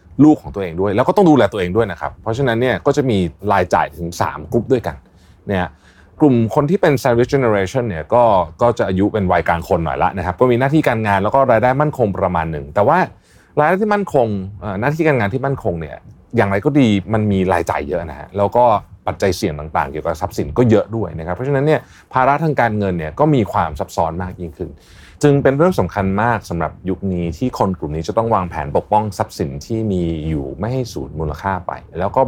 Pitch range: 90-120 Hz